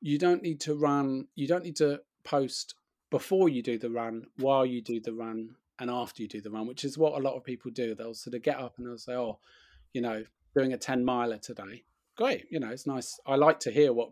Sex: male